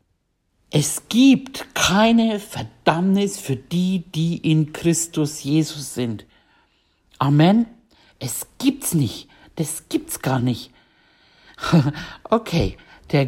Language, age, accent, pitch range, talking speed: German, 60-79, German, 130-170 Hz, 95 wpm